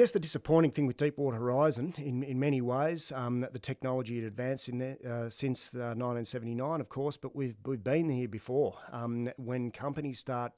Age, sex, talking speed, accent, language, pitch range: 40-59, male, 200 wpm, Australian, English, 105-125 Hz